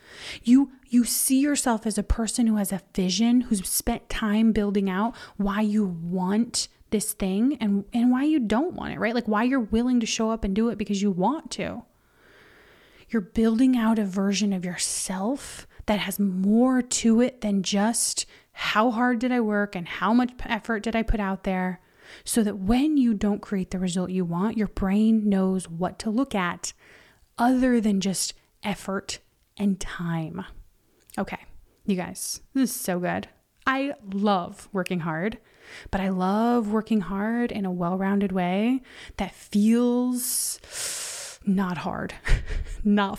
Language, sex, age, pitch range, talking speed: English, female, 30-49, 195-240 Hz, 170 wpm